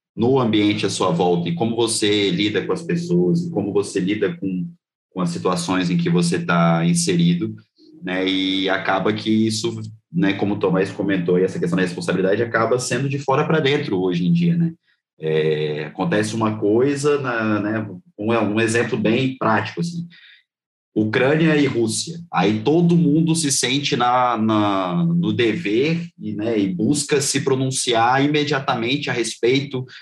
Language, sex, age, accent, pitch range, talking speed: Portuguese, male, 20-39, Brazilian, 110-165 Hz, 165 wpm